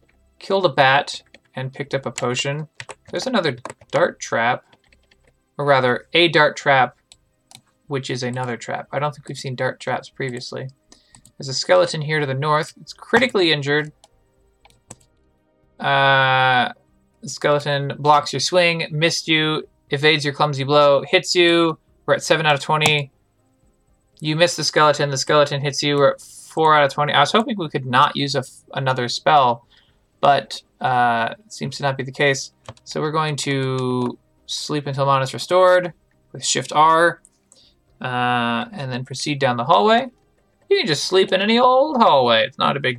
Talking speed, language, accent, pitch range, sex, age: 170 wpm, English, American, 130-155 Hz, male, 20-39